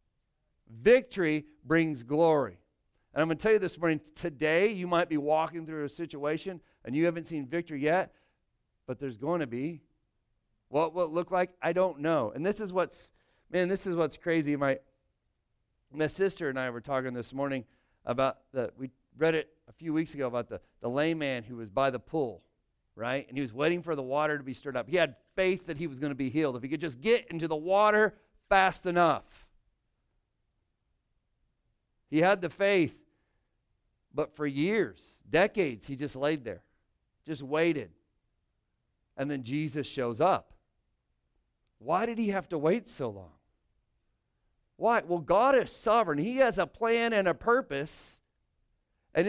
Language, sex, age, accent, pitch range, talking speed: English, male, 40-59, American, 135-185 Hz, 180 wpm